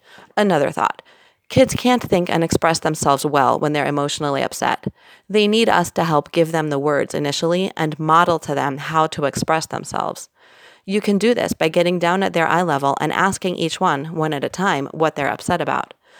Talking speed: 200 wpm